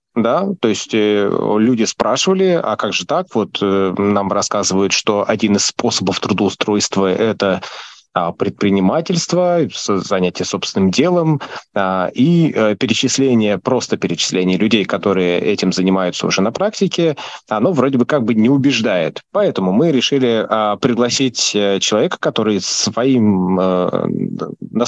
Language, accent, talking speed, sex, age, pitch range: Russian, native, 120 wpm, male, 20-39, 95-130 Hz